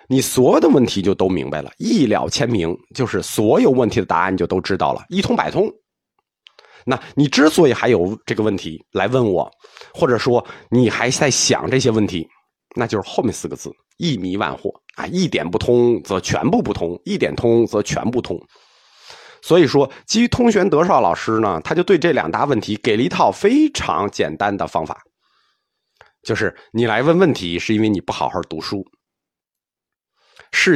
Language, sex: Chinese, male